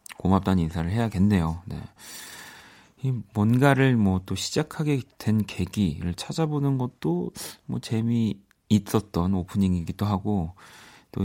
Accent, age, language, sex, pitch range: native, 40-59, Korean, male, 95-125 Hz